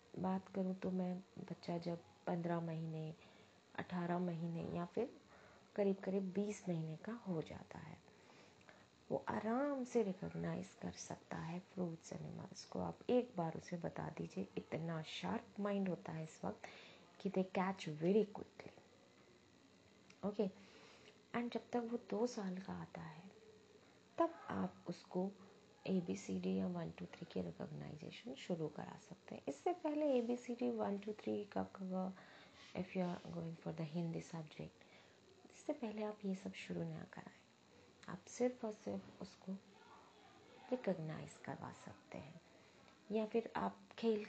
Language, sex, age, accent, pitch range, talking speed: Hindi, female, 20-39, native, 170-215 Hz, 155 wpm